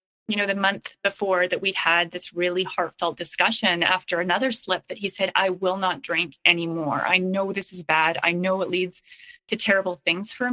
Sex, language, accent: female, English, American